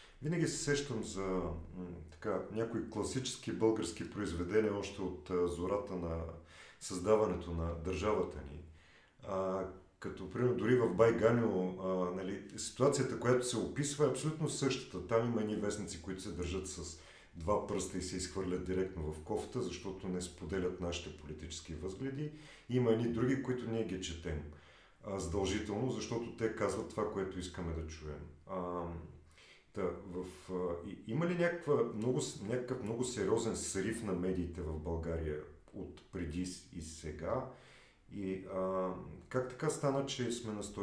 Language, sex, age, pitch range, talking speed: Bulgarian, male, 40-59, 85-110 Hz, 150 wpm